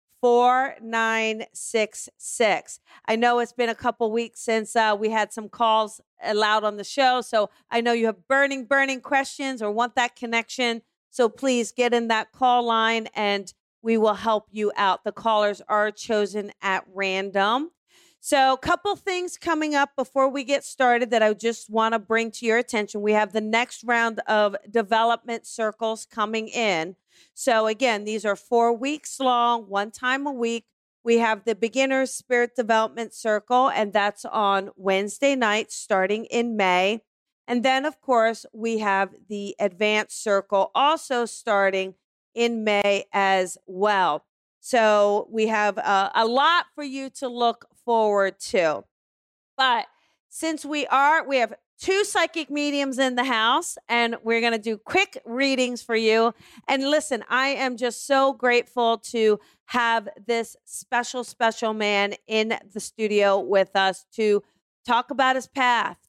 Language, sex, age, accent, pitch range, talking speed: English, female, 40-59, American, 210-255 Hz, 160 wpm